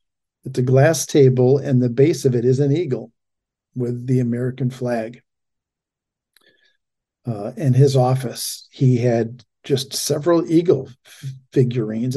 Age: 50-69